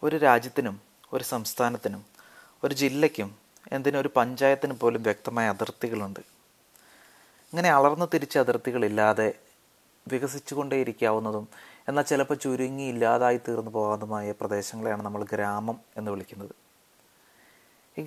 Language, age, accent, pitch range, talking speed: Malayalam, 30-49, native, 110-135 Hz, 95 wpm